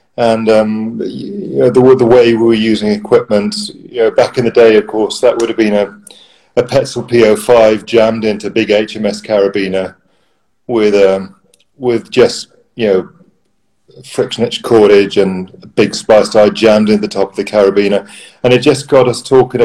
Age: 40-59